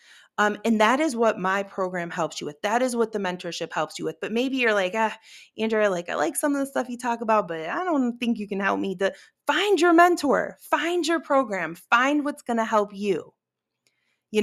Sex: female